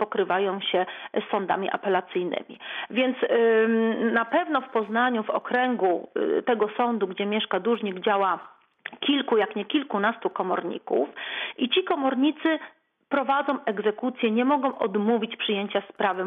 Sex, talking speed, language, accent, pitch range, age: female, 120 wpm, Polish, native, 205-250 Hz, 40-59